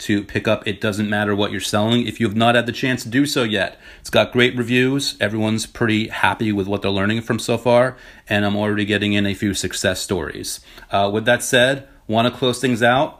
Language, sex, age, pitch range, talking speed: English, male, 30-49, 105-125 Hz, 230 wpm